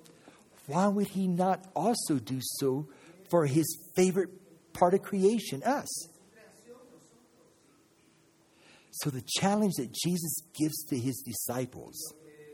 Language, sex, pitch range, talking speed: English, male, 130-175 Hz, 110 wpm